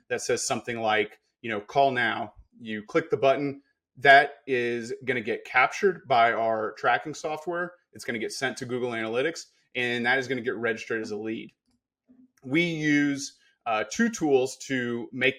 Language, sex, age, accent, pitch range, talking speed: English, male, 30-49, American, 120-160 Hz, 185 wpm